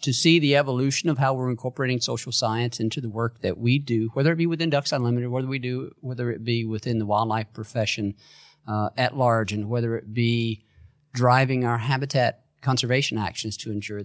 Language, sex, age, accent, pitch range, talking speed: English, male, 40-59, American, 105-125 Hz, 195 wpm